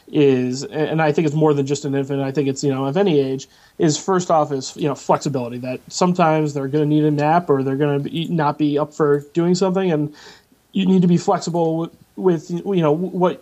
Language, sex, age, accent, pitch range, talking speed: English, male, 30-49, American, 145-170 Hz, 240 wpm